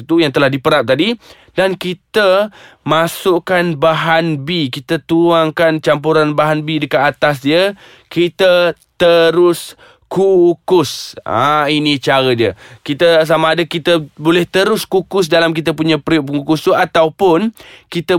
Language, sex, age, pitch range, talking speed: Malay, male, 20-39, 130-170 Hz, 135 wpm